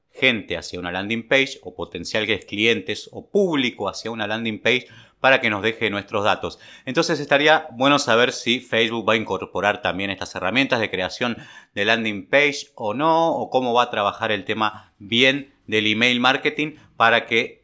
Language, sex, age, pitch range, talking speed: Spanish, male, 30-49, 105-130 Hz, 185 wpm